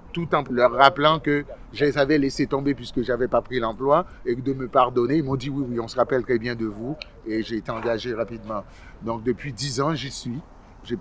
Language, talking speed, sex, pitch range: French, 255 wpm, male, 110-135 Hz